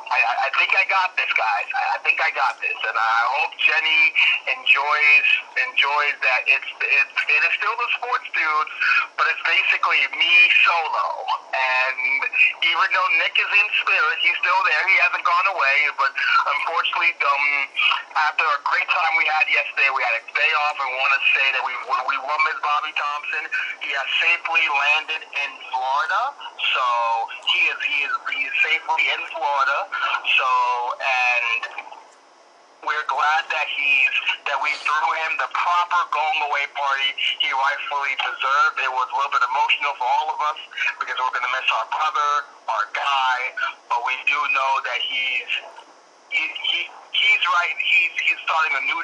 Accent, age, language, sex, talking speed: American, 40-59, English, male, 170 wpm